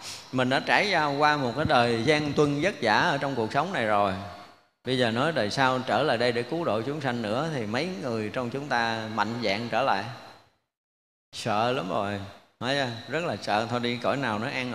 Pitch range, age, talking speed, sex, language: 110-135 Hz, 20-39, 215 wpm, male, Vietnamese